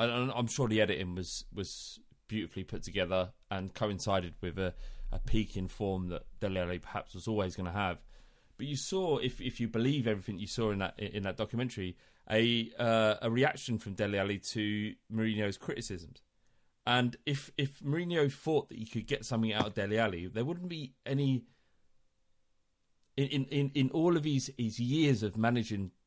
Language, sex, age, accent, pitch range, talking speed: English, male, 30-49, British, 100-130 Hz, 180 wpm